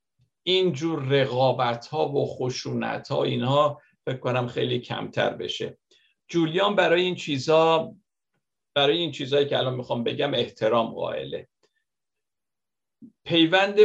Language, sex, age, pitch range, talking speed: Persian, male, 50-69, 125-165 Hz, 105 wpm